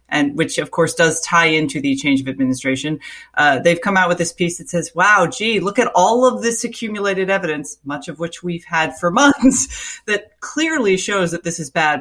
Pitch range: 155-195 Hz